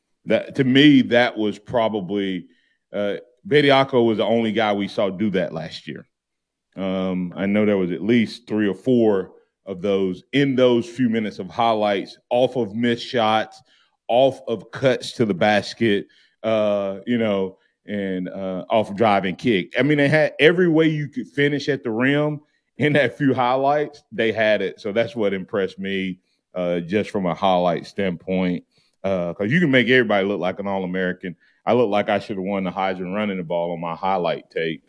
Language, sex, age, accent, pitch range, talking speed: English, male, 30-49, American, 100-135 Hz, 190 wpm